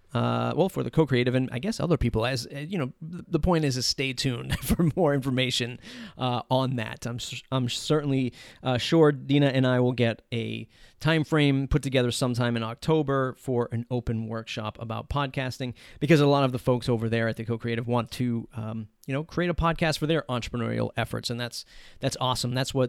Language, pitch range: English, 120-150 Hz